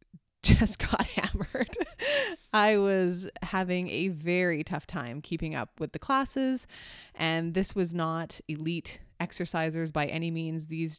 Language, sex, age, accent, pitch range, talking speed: English, female, 20-39, American, 150-180 Hz, 135 wpm